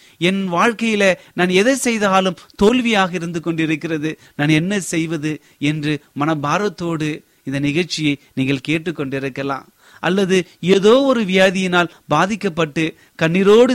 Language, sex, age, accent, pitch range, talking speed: Tamil, male, 30-49, native, 135-180 Hz, 95 wpm